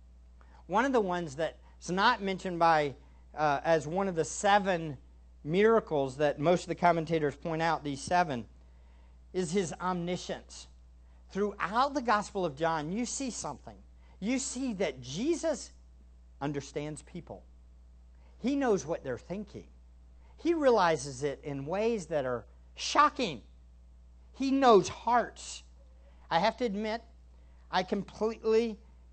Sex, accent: male, American